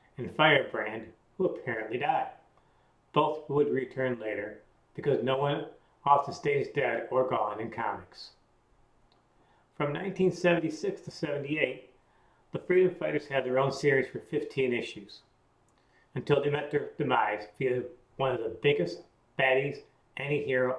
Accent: American